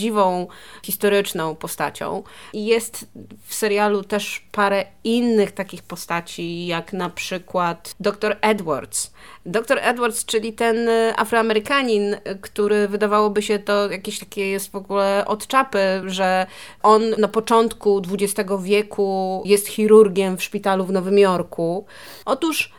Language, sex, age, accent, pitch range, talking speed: Polish, female, 30-49, native, 195-225 Hz, 120 wpm